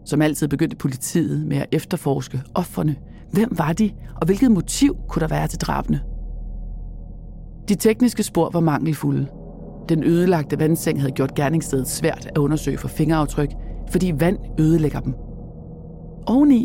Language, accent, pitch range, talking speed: English, Danish, 145-185 Hz, 145 wpm